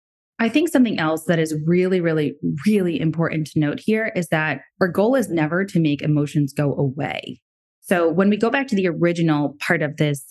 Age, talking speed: 20-39, 205 wpm